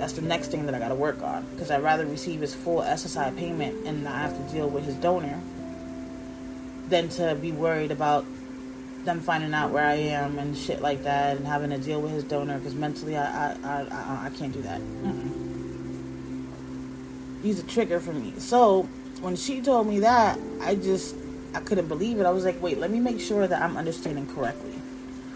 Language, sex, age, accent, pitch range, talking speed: English, female, 30-49, American, 130-190 Hz, 205 wpm